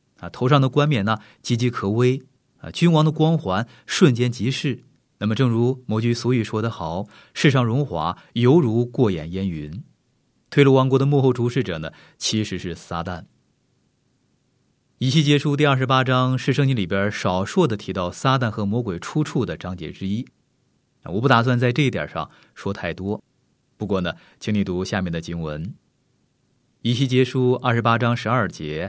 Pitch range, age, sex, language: 100-135 Hz, 30-49, male, Chinese